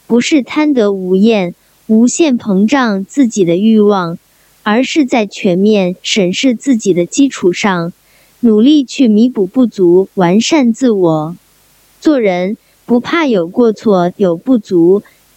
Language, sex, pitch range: Chinese, male, 185-270 Hz